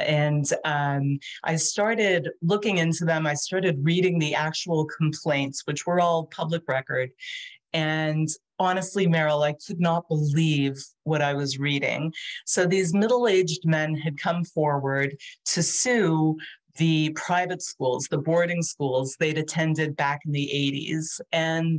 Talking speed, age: 140 wpm, 40-59